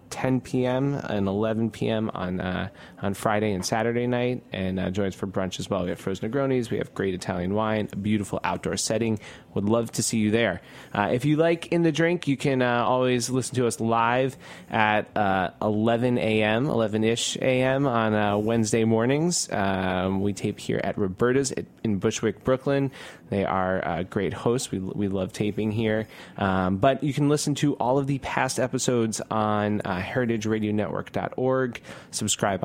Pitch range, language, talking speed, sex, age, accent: 100-125 Hz, English, 185 wpm, male, 20-39, American